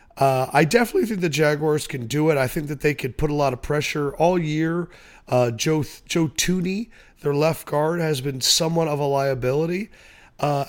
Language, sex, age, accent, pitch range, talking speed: English, male, 30-49, American, 120-155 Hz, 195 wpm